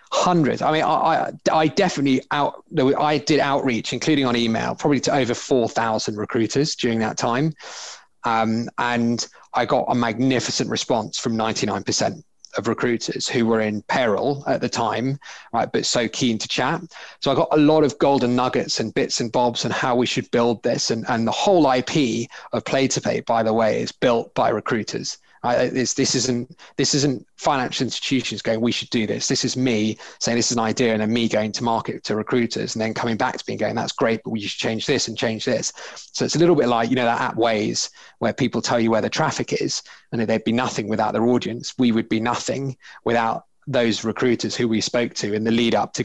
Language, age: English, 30-49